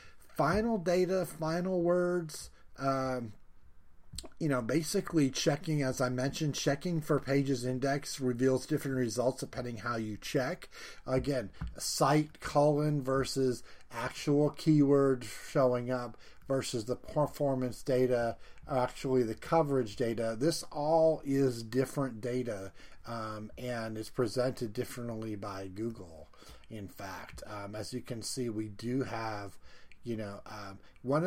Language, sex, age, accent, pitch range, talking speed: English, male, 40-59, American, 115-145 Hz, 125 wpm